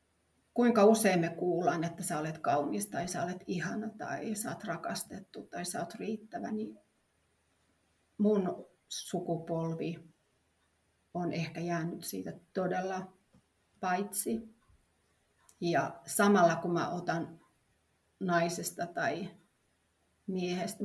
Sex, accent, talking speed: female, native, 105 wpm